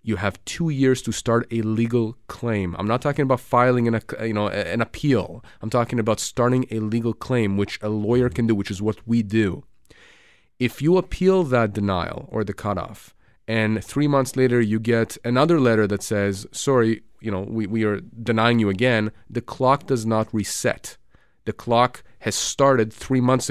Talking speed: 190 wpm